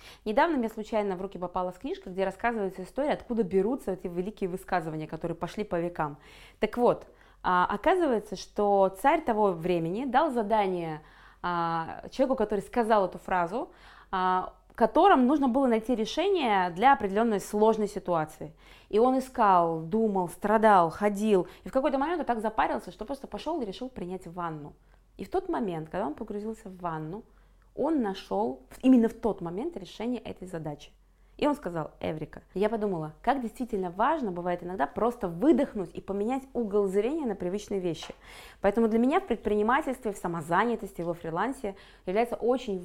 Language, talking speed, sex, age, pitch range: Russian, 155 wpm, female, 20-39, 180-235 Hz